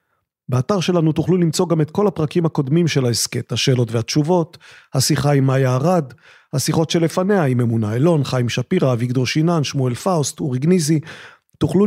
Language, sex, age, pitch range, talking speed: Hebrew, male, 40-59, 135-185 Hz, 150 wpm